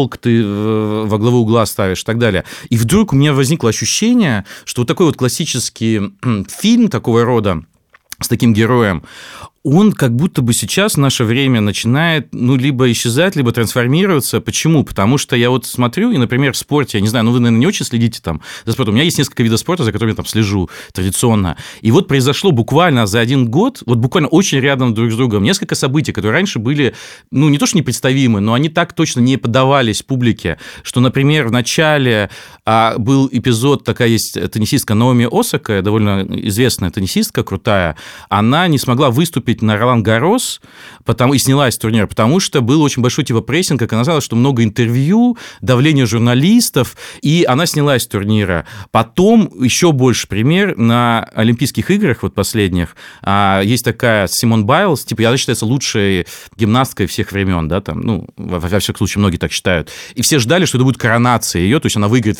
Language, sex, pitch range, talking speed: Russian, male, 110-140 Hz, 185 wpm